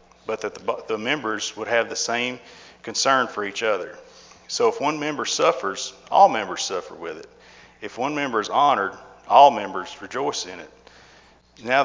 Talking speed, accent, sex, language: 170 wpm, American, male, English